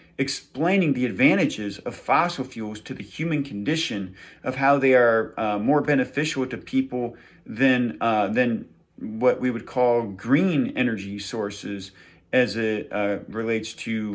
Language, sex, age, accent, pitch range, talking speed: English, male, 40-59, American, 110-150 Hz, 145 wpm